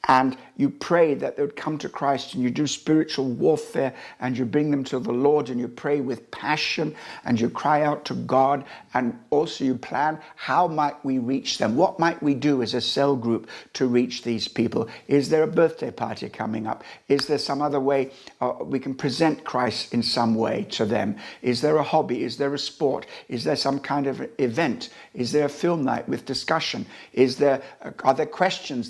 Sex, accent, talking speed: male, British, 210 wpm